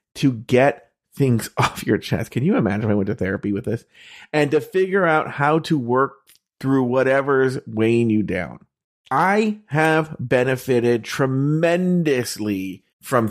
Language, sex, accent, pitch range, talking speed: English, male, American, 115-160 Hz, 150 wpm